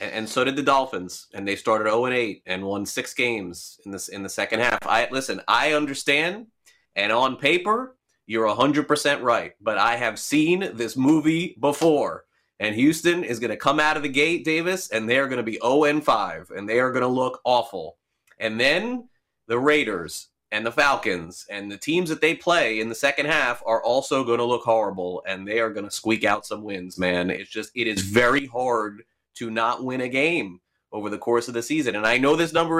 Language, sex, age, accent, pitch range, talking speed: English, male, 30-49, American, 115-180 Hz, 220 wpm